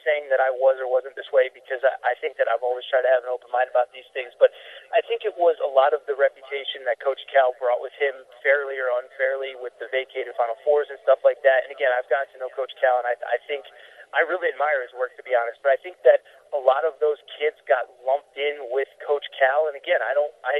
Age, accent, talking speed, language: 30-49, American, 265 wpm, English